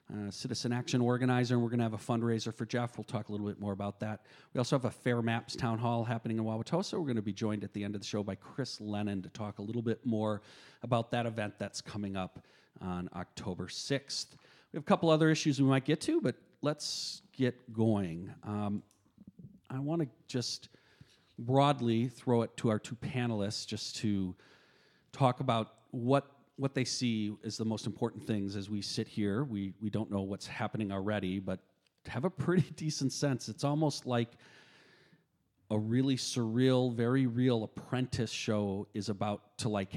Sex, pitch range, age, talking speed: male, 105-130 Hz, 40-59, 195 wpm